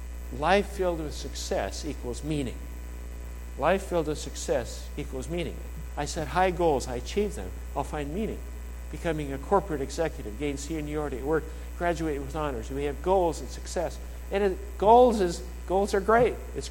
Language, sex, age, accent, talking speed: English, male, 60-79, American, 165 wpm